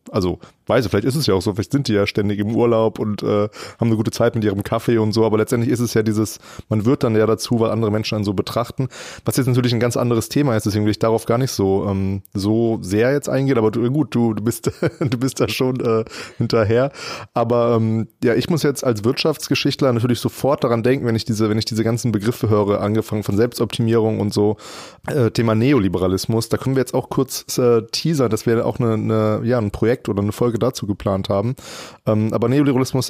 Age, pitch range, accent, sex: 30-49, 105-125 Hz, German, male